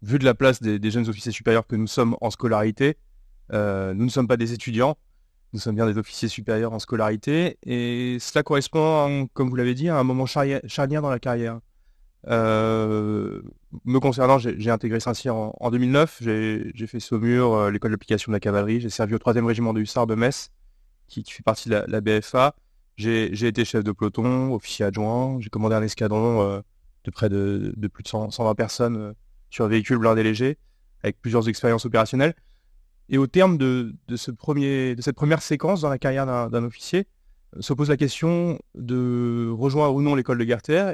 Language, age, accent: French, 30-49, French